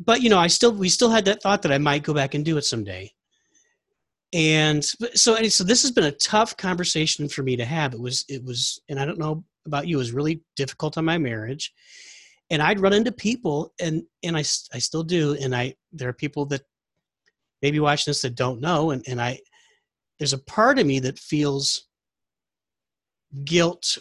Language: English